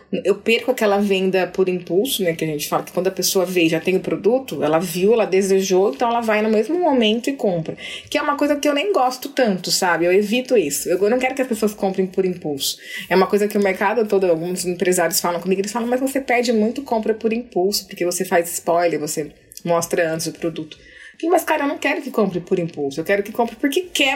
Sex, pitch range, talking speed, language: female, 175-230 Hz, 245 wpm, Portuguese